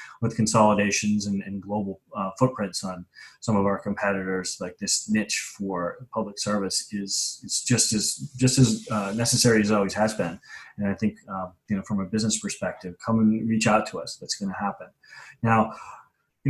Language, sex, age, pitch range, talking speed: English, male, 30-49, 105-125 Hz, 190 wpm